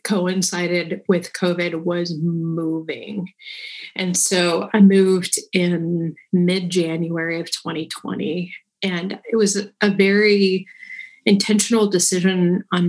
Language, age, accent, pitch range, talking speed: English, 30-49, American, 165-200 Hz, 100 wpm